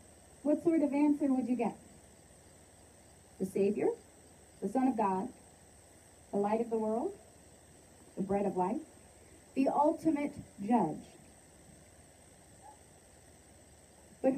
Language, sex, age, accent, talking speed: English, female, 40-59, American, 110 wpm